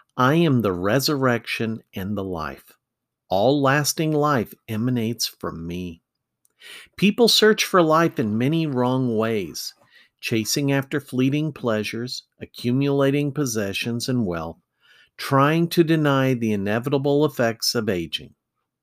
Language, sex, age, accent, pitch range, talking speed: English, male, 50-69, American, 110-150 Hz, 120 wpm